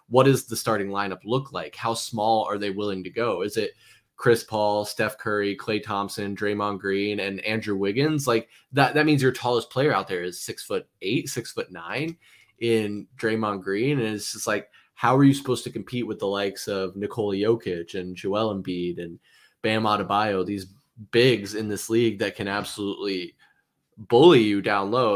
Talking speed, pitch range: 190 wpm, 105-125 Hz